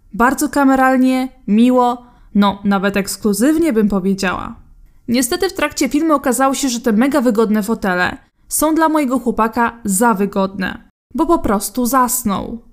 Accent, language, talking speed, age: native, Polish, 135 wpm, 20-39